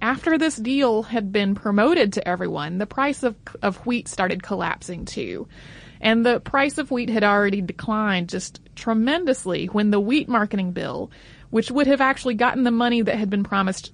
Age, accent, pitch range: 30-49, American, 185-235 Hz